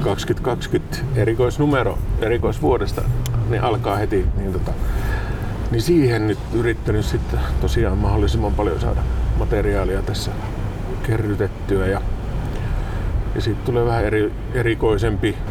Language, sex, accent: Finnish, male, native